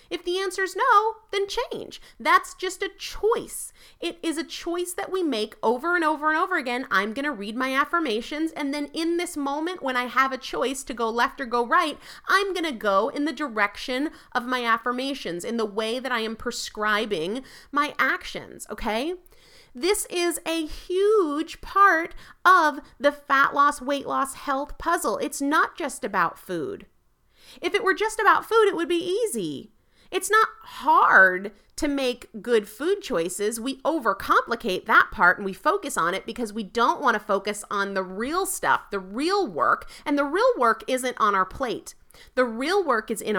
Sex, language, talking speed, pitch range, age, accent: female, English, 190 wpm, 230-355 Hz, 30-49, American